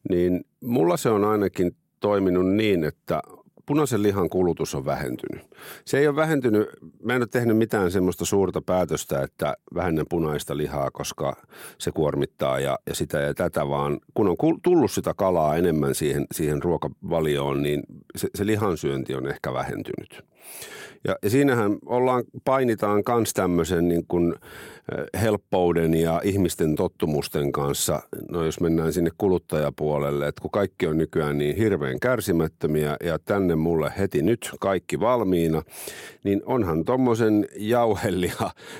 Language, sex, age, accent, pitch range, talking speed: Finnish, male, 50-69, native, 80-105 Hz, 135 wpm